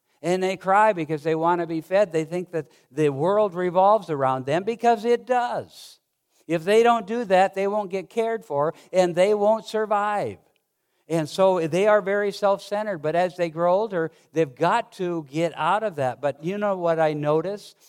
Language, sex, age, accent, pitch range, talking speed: English, male, 60-79, American, 145-185 Hz, 195 wpm